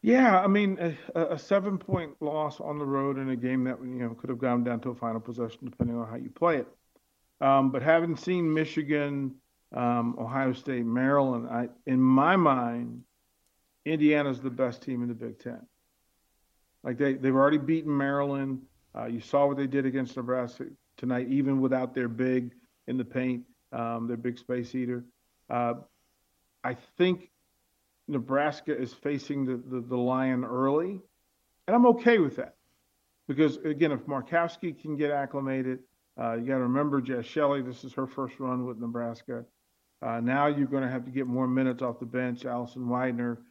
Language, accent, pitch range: English, American, 120-140 Hz